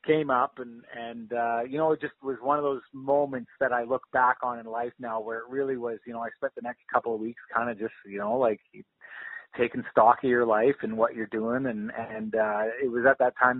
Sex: male